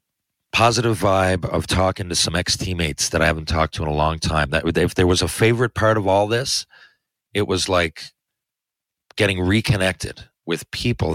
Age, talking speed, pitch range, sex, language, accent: 40-59, 180 wpm, 85-105 Hz, male, English, American